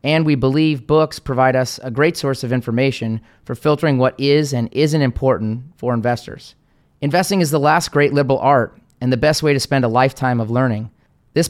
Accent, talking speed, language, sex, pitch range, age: American, 200 wpm, English, male, 125-150 Hz, 30-49